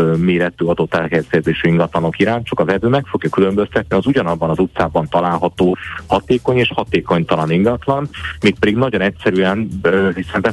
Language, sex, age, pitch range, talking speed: Hungarian, male, 30-49, 85-100 Hz, 150 wpm